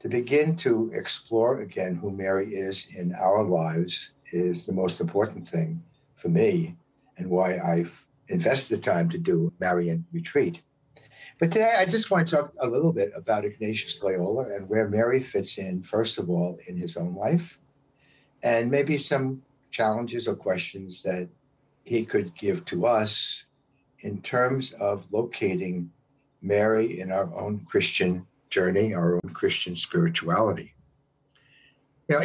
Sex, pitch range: male, 100-145 Hz